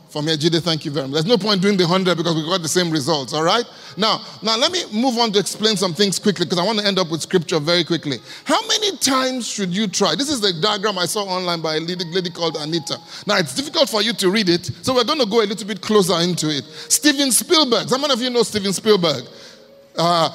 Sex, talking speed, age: male, 255 wpm, 30-49